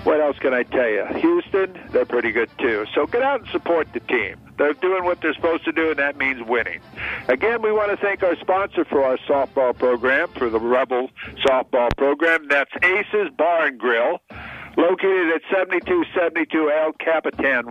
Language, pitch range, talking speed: English, 145-210 Hz, 185 wpm